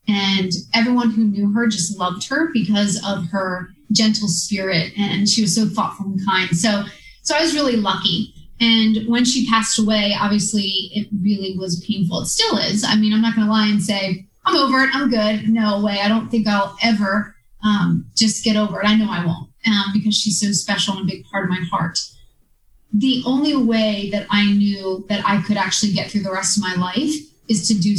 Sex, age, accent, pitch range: female, 30-49, American, 200-230 Hz